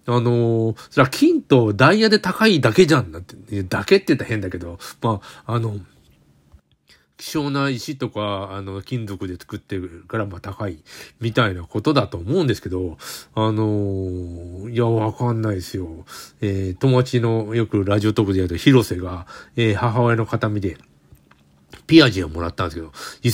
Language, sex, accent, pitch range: Japanese, male, native, 95-140 Hz